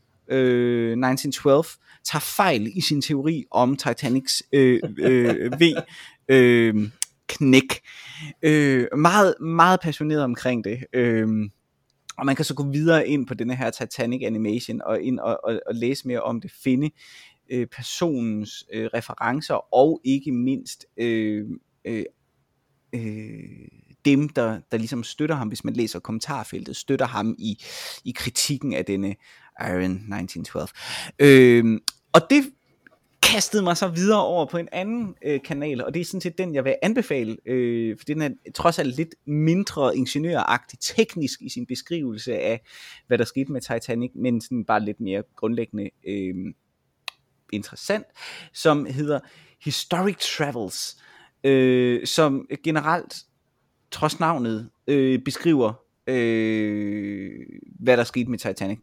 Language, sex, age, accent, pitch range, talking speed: Danish, male, 20-39, native, 115-155 Hz, 140 wpm